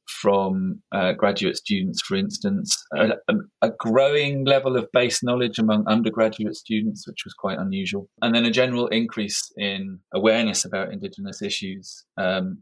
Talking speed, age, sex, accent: 145 wpm, 30-49, male, British